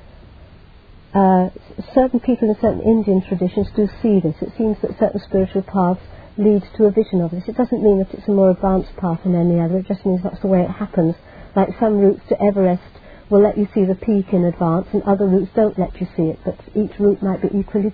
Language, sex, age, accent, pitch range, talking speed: English, female, 50-69, British, 175-210 Hz, 230 wpm